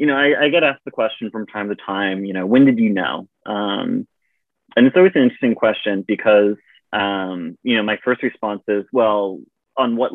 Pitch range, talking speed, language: 100-130 Hz, 215 wpm, English